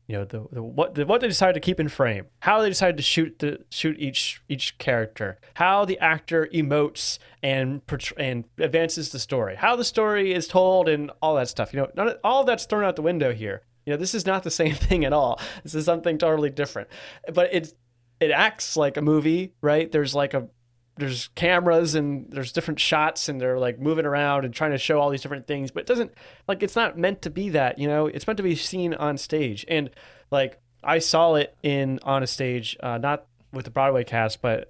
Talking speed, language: 230 wpm, English